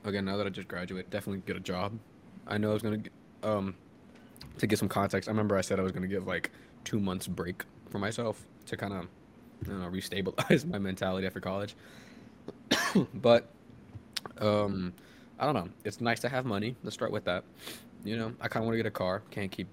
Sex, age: male, 20-39